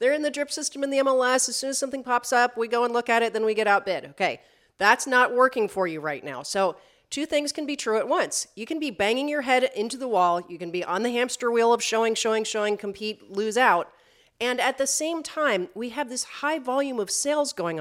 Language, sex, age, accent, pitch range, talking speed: English, female, 40-59, American, 190-270 Hz, 255 wpm